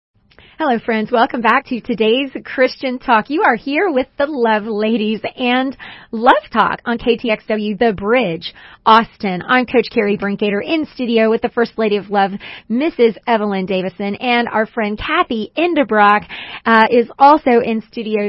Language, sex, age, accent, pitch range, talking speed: English, female, 30-49, American, 220-275 Hz, 160 wpm